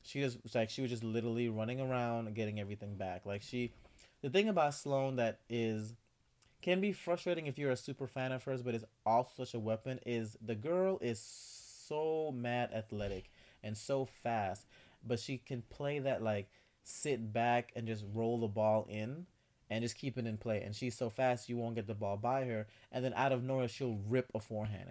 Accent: American